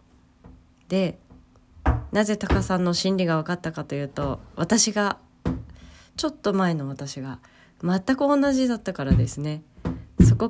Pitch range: 120-200 Hz